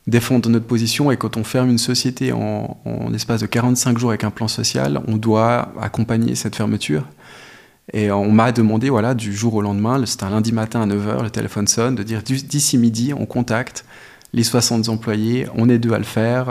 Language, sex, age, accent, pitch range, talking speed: French, male, 20-39, French, 110-125 Hz, 205 wpm